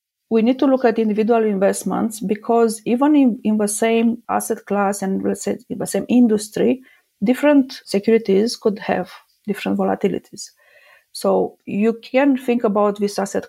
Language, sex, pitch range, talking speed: English, female, 195-230 Hz, 145 wpm